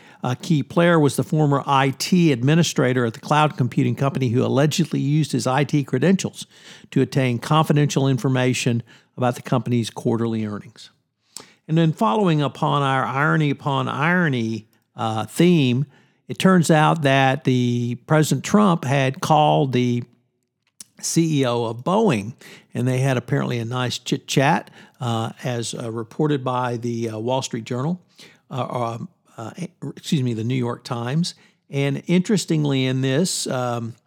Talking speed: 150 wpm